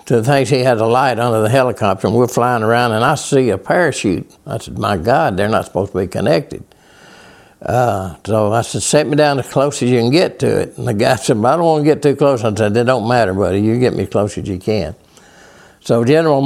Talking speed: 255 wpm